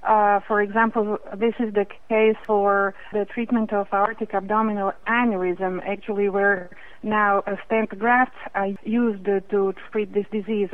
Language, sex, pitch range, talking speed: English, female, 200-225 Hz, 145 wpm